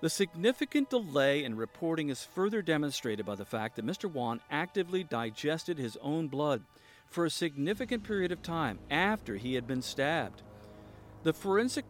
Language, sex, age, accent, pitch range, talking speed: English, male, 50-69, American, 115-165 Hz, 160 wpm